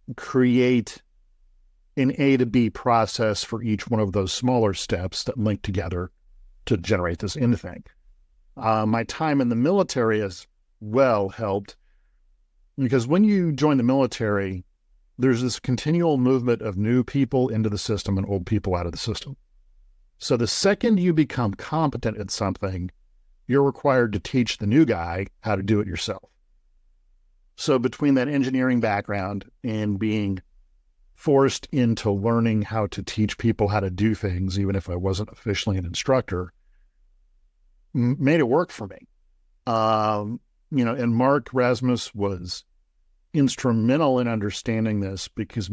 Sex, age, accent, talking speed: male, 50-69, American, 150 wpm